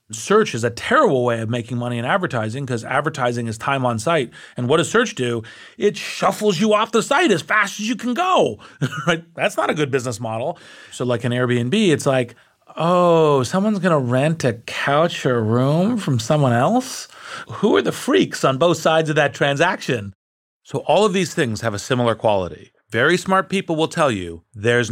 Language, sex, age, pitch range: English, male, 40-59, 115-165 Hz